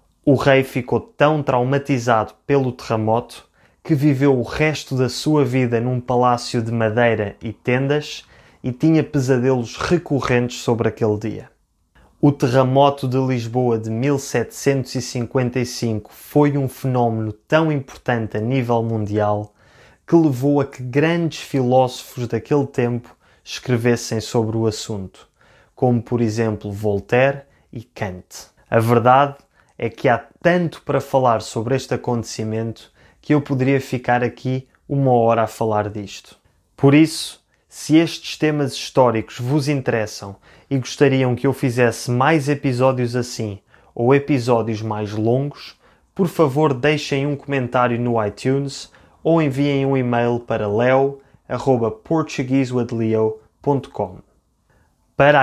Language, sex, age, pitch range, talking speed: Portuguese, male, 20-39, 115-140 Hz, 125 wpm